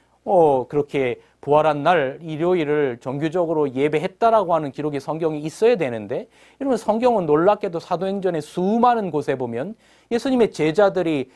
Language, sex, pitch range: Korean, male, 140-205 Hz